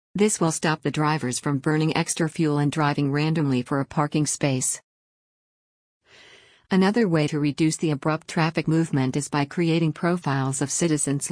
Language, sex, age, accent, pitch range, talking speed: English, female, 50-69, American, 145-165 Hz, 160 wpm